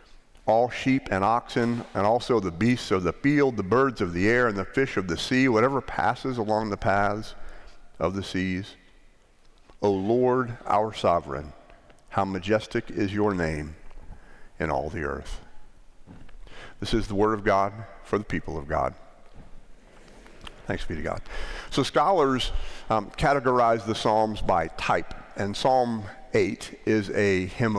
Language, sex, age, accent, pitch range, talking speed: English, male, 50-69, American, 100-125 Hz, 155 wpm